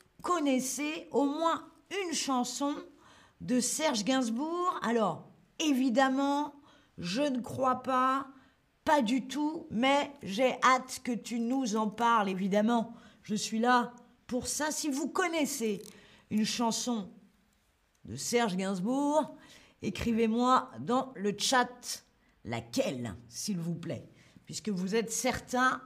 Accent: French